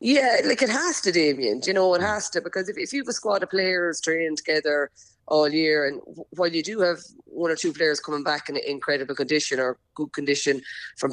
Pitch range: 150-190 Hz